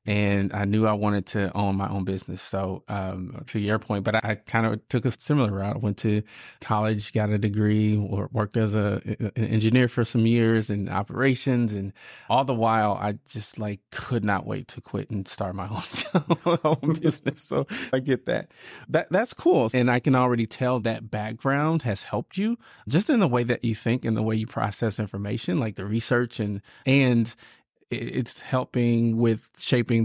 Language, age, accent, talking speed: English, 30-49, American, 200 wpm